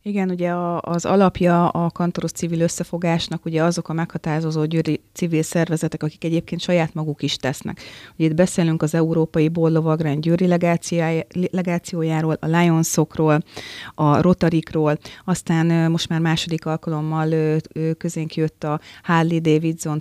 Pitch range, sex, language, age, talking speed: 155-170 Hz, female, Hungarian, 30-49, 135 wpm